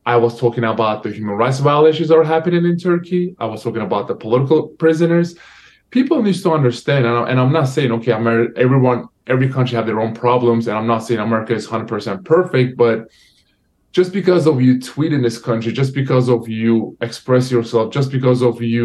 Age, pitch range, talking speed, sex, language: 20-39, 120-155 Hz, 200 wpm, male, English